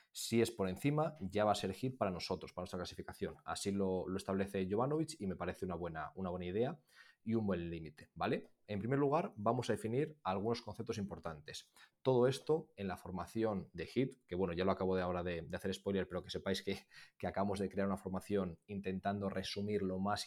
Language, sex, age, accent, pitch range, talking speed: Spanish, male, 20-39, Spanish, 95-115 Hz, 215 wpm